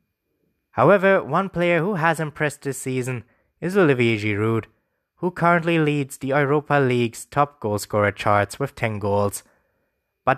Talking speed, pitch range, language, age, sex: 140 wpm, 105-155 Hz, English, 20-39, male